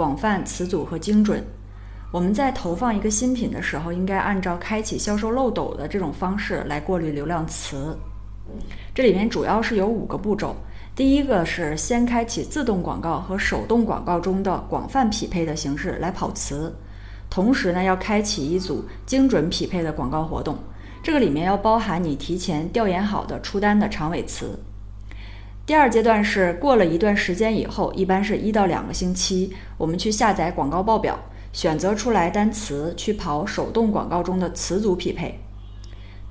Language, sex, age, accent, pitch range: Chinese, female, 20-39, native, 155-215 Hz